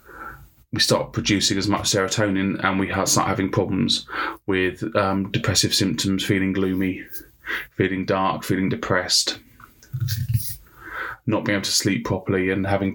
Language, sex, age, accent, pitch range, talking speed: English, male, 20-39, British, 95-110 Hz, 135 wpm